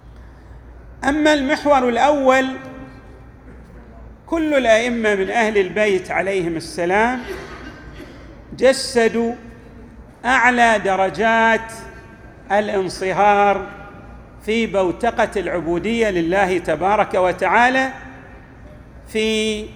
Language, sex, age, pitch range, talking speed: Arabic, male, 40-59, 195-255 Hz, 65 wpm